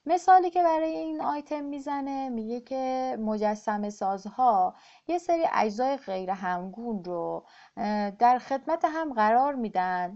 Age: 30-49